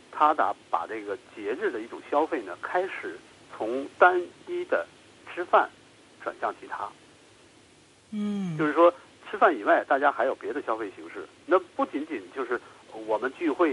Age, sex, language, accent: 50-69, male, Chinese, native